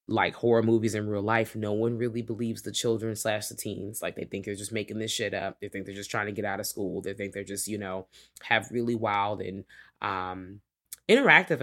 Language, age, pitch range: English, 20-39, 115-185 Hz